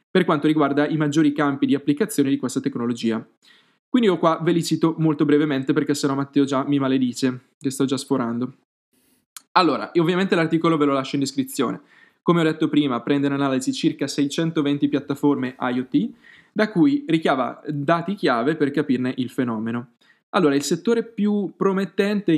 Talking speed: 170 wpm